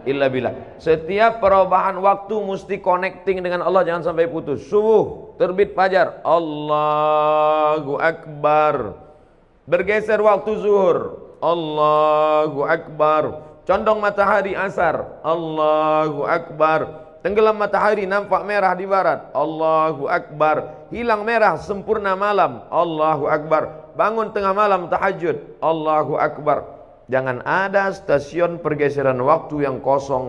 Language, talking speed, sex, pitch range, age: Indonesian, 105 wpm, male, 150-200 Hz, 40-59